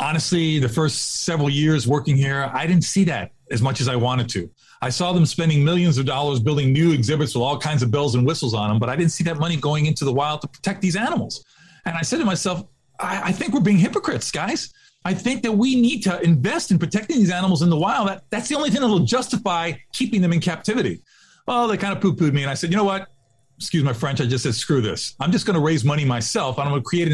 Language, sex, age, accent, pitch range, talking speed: English, male, 40-59, American, 140-195 Hz, 265 wpm